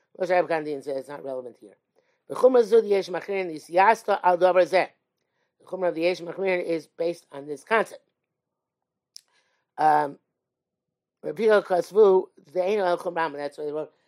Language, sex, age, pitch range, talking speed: English, male, 50-69, 155-205 Hz, 150 wpm